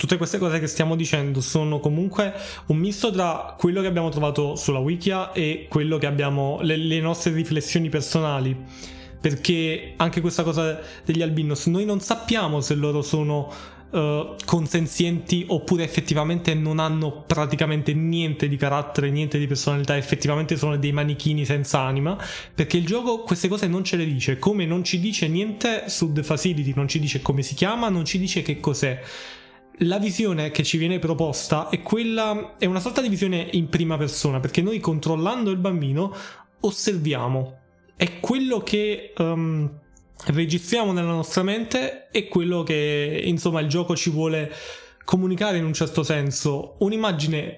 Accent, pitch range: native, 150-185 Hz